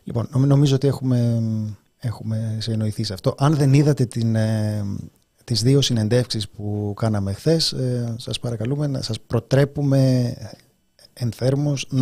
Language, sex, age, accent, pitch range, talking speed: Greek, male, 30-49, native, 105-130 Hz, 135 wpm